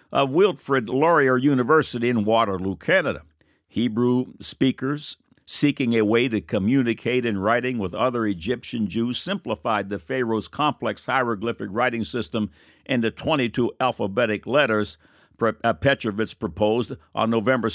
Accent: American